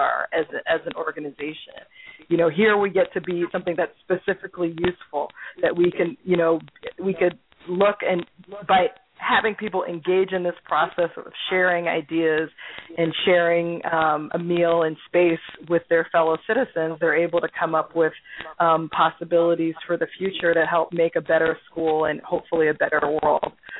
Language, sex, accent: English, female, American